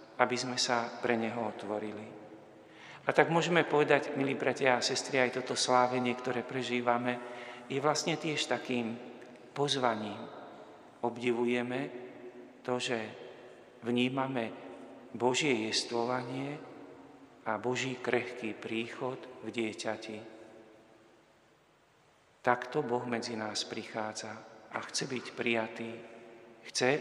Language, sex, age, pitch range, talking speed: Slovak, male, 40-59, 110-125 Hz, 100 wpm